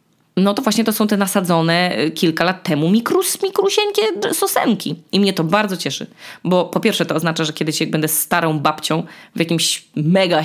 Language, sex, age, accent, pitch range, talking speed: Polish, female, 20-39, native, 155-210 Hz, 170 wpm